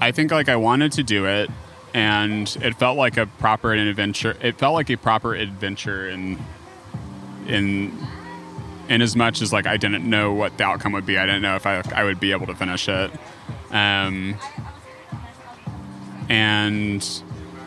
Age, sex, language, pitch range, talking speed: 20-39, male, English, 100-125 Hz, 170 wpm